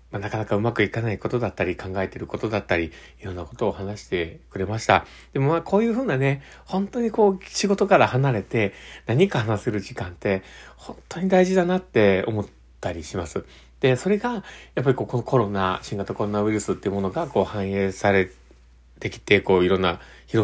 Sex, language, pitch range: male, Japanese, 95-120 Hz